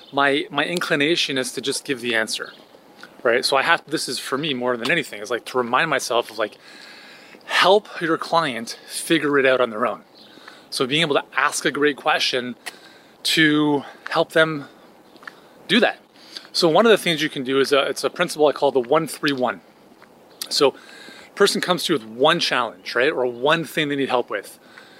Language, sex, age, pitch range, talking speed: English, male, 30-49, 135-170 Hz, 200 wpm